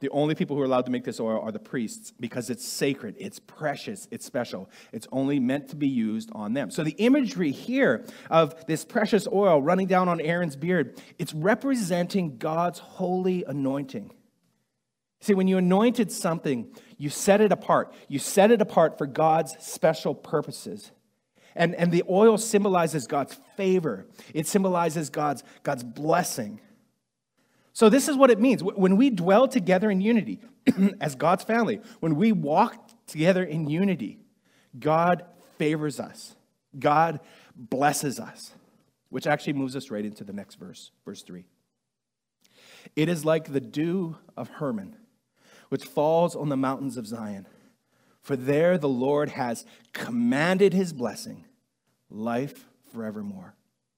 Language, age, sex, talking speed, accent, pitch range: English, 40-59, male, 150 wpm, American, 150-215 Hz